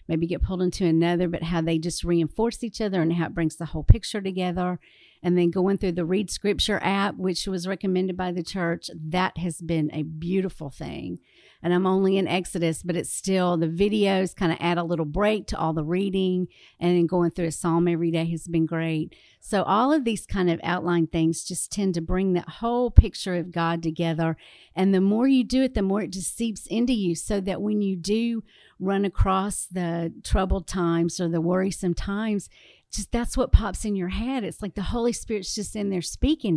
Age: 50-69